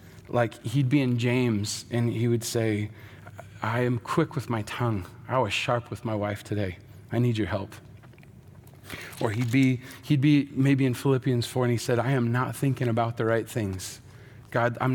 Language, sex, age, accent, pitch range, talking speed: English, male, 30-49, American, 115-145 Hz, 195 wpm